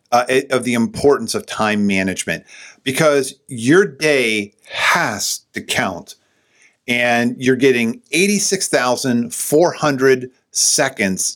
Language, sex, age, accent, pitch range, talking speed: English, male, 50-69, American, 105-135 Hz, 95 wpm